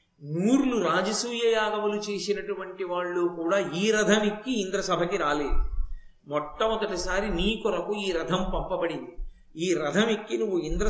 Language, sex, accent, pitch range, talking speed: Telugu, male, native, 180-220 Hz, 115 wpm